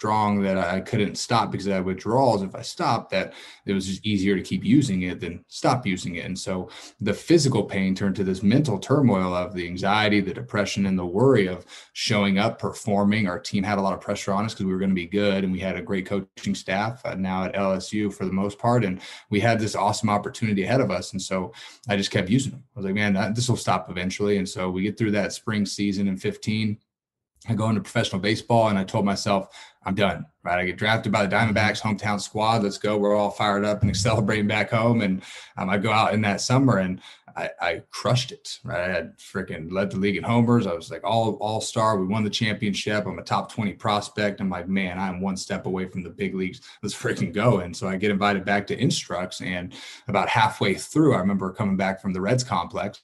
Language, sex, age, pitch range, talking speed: English, male, 30-49, 95-105 Hz, 240 wpm